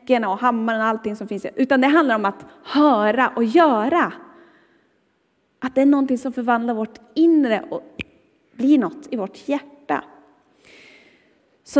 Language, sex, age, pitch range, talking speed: Swedish, female, 30-49, 235-310 Hz, 115 wpm